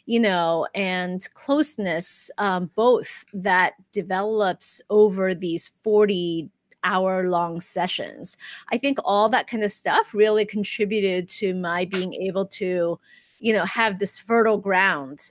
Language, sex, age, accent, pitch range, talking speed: English, female, 30-49, American, 180-215 Hz, 135 wpm